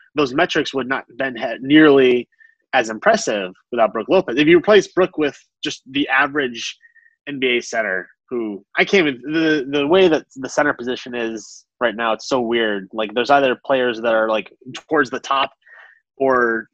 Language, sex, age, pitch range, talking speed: English, male, 20-39, 120-165 Hz, 185 wpm